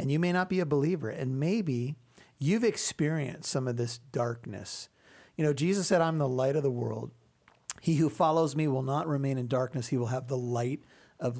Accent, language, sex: American, English, male